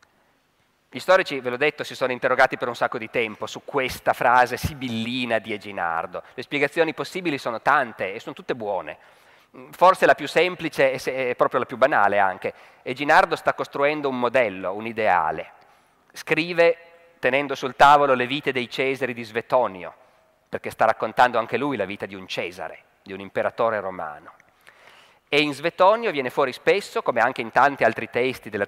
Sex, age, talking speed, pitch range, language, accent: male, 30-49, 170 wpm, 130-180 Hz, Italian, native